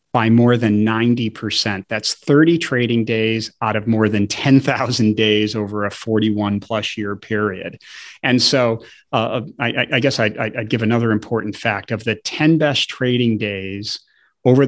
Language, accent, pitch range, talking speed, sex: English, American, 110-130 Hz, 155 wpm, male